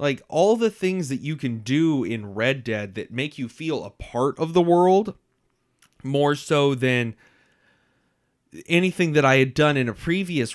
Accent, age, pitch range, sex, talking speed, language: American, 30-49, 120-160 Hz, male, 175 wpm, English